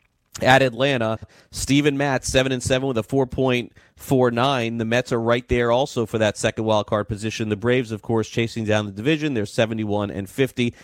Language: English